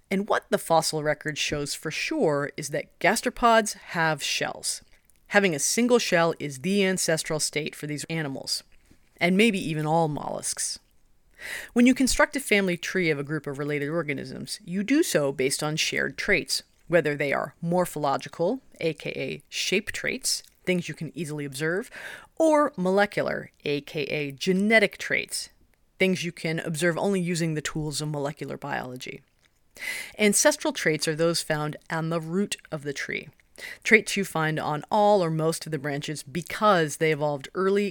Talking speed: 160 wpm